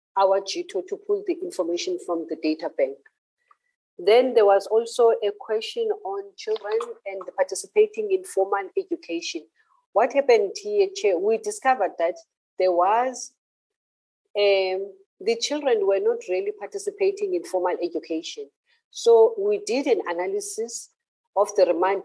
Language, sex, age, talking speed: English, female, 50-69, 135 wpm